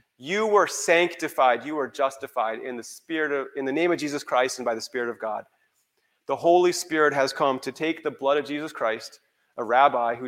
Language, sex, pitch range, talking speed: English, male, 125-160 Hz, 215 wpm